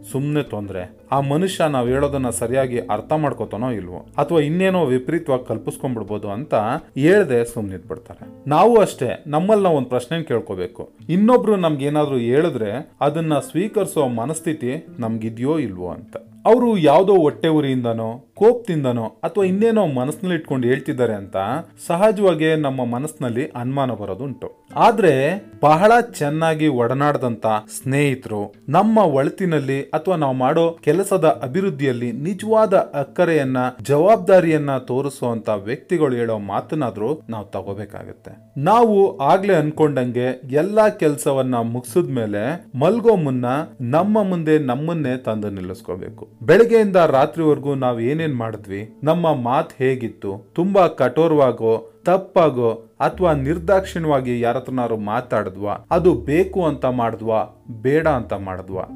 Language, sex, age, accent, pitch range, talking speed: Kannada, male, 30-49, native, 115-165 Hz, 105 wpm